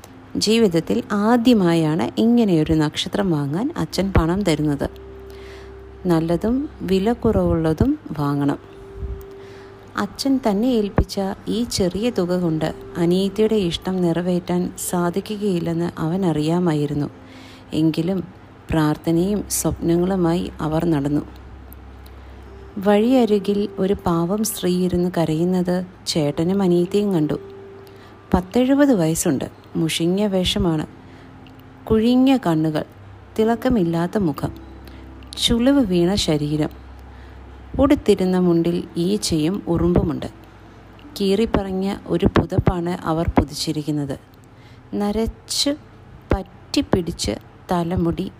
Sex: female